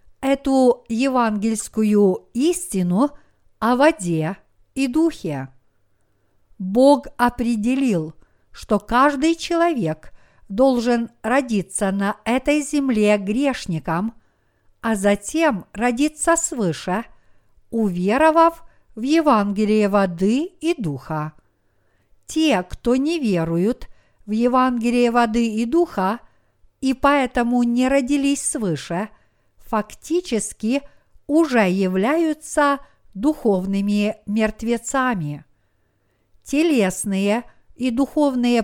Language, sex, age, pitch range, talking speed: Russian, female, 50-69, 195-275 Hz, 80 wpm